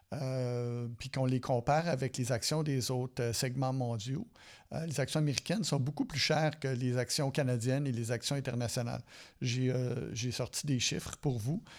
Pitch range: 130-150 Hz